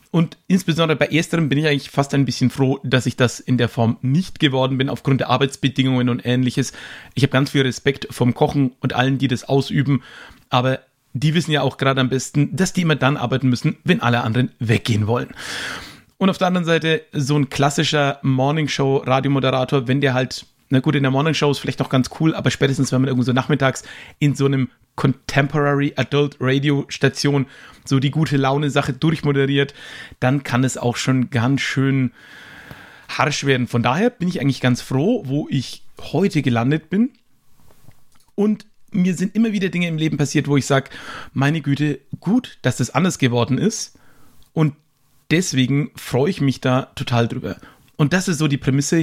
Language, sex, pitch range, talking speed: German, male, 130-150 Hz, 190 wpm